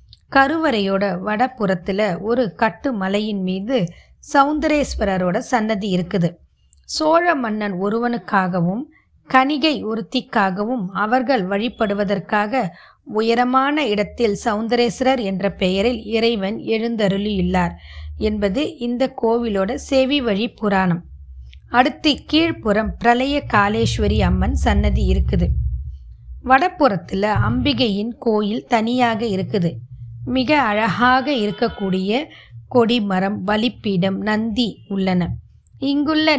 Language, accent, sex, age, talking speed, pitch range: Tamil, native, female, 20-39, 80 wpm, 185-250 Hz